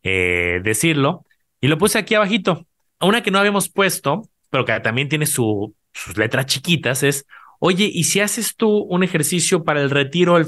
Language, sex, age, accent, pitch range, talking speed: Spanish, male, 30-49, Mexican, 125-165 Hz, 170 wpm